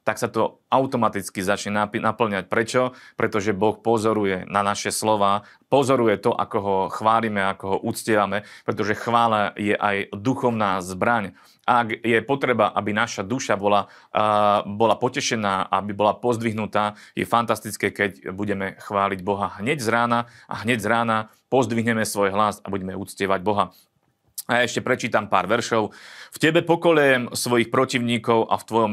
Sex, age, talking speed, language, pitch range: male, 30-49, 150 wpm, Slovak, 105-120 Hz